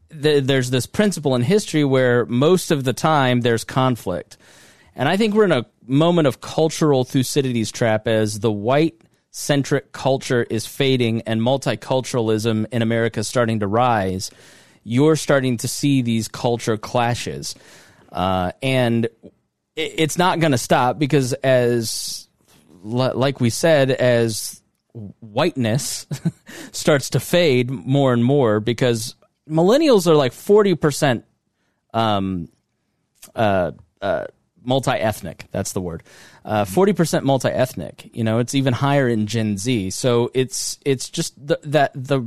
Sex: male